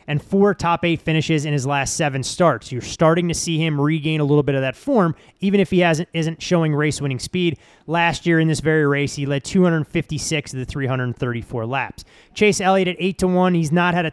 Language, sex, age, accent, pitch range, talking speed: English, male, 30-49, American, 140-170 Hz, 225 wpm